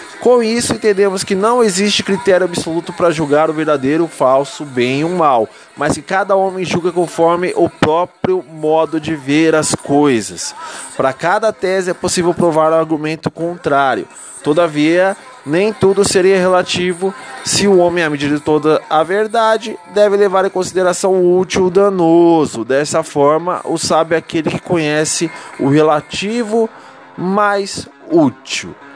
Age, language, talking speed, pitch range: 20-39, Portuguese, 155 wpm, 140-190 Hz